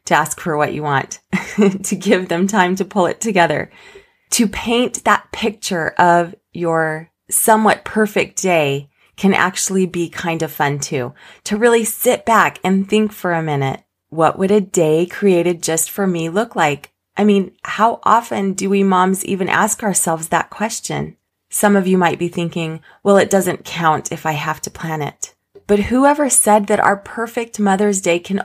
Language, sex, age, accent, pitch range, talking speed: English, female, 30-49, American, 170-210 Hz, 180 wpm